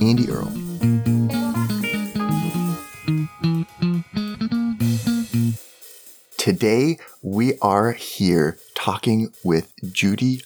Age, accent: 30-49, American